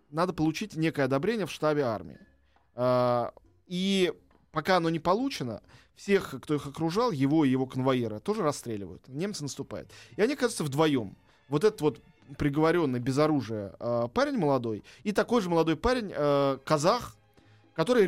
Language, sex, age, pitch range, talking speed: Russian, male, 20-39, 130-170 Hz, 145 wpm